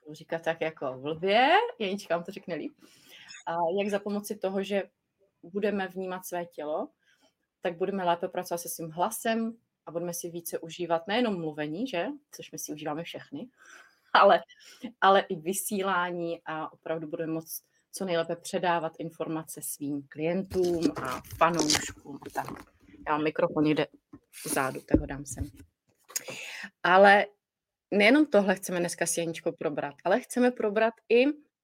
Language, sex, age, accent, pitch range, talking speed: Czech, female, 30-49, native, 170-235 Hz, 145 wpm